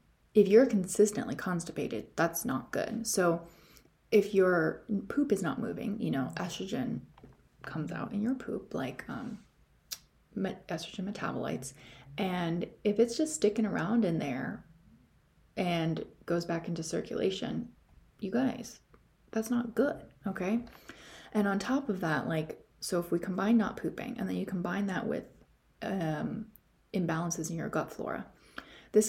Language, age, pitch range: English, 30-49, 170-215 Hz